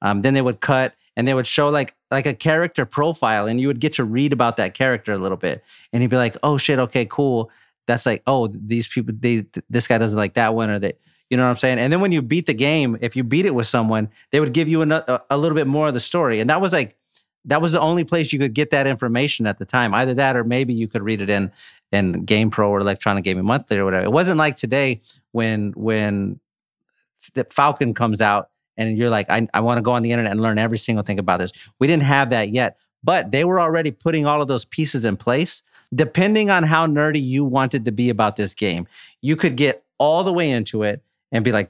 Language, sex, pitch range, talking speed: English, male, 115-145 Hz, 260 wpm